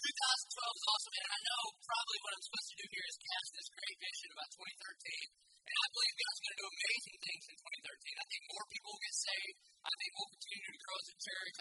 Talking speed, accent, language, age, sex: 250 wpm, American, English, 30-49, male